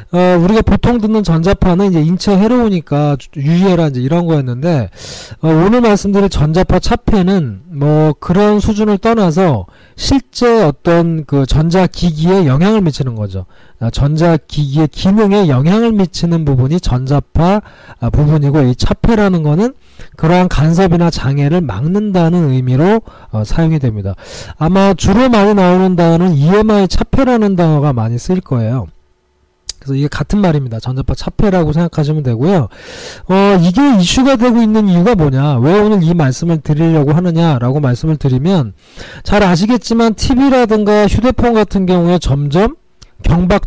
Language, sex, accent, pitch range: Korean, male, native, 140-200 Hz